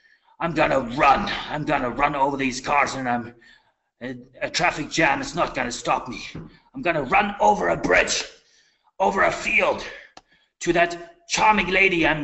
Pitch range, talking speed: 135-185 Hz, 165 wpm